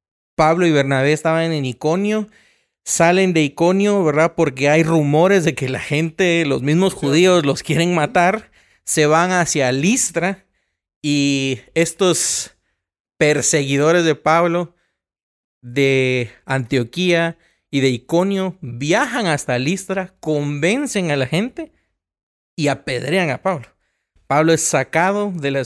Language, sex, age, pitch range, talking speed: Spanish, male, 40-59, 130-175 Hz, 125 wpm